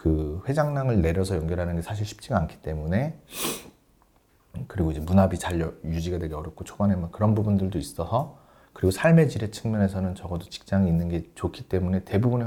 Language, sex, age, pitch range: Korean, male, 40-59, 90-120 Hz